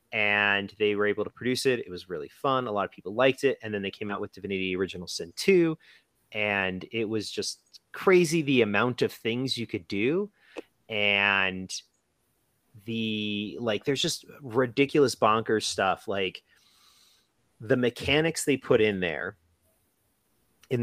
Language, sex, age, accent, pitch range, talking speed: English, male, 30-49, American, 100-125 Hz, 160 wpm